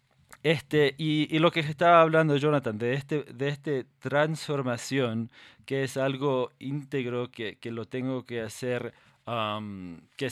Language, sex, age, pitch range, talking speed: Spanish, male, 20-39, 115-150 Hz, 145 wpm